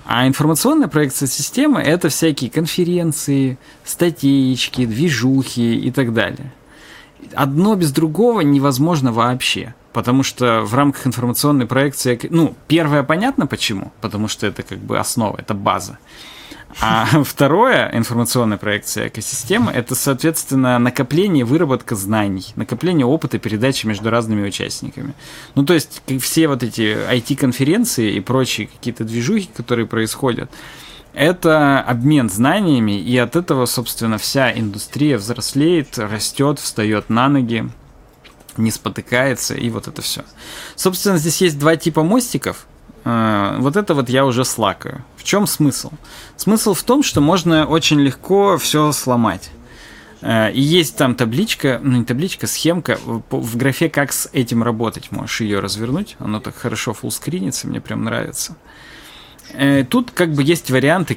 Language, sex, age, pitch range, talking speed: Russian, male, 20-39, 115-150 Hz, 135 wpm